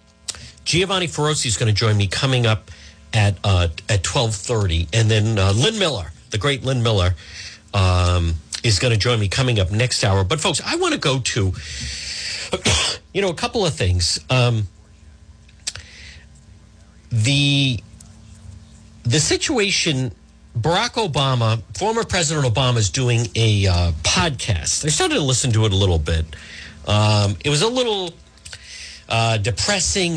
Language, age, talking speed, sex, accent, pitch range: English, 50-69, 150 wpm, male, American, 95-140 Hz